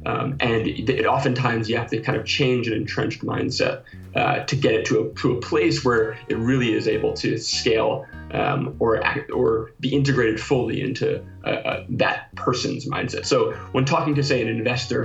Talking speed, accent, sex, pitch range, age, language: 195 wpm, American, male, 110-135 Hz, 20-39, English